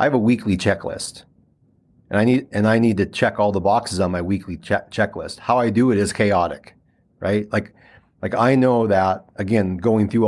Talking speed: 210 wpm